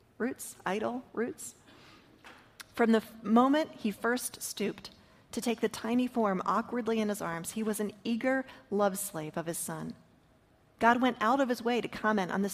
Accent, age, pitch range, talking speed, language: American, 40-59, 190-230 Hz, 175 wpm, English